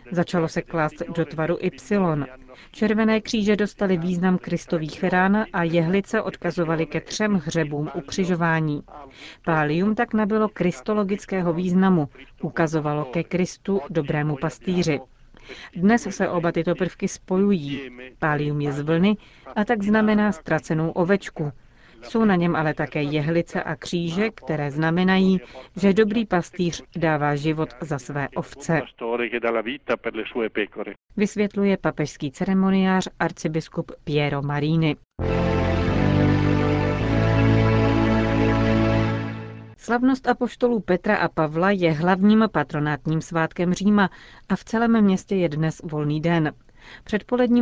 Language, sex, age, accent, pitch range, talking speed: Czech, female, 40-59, native, 150-195 Hz, 110 wpm